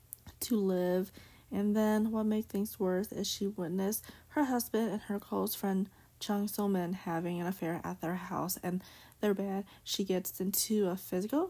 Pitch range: 180-210 Hz